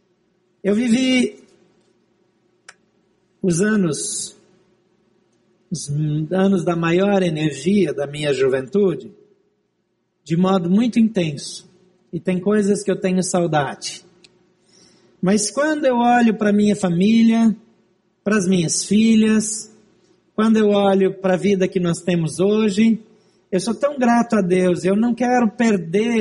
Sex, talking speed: male, 125 wpm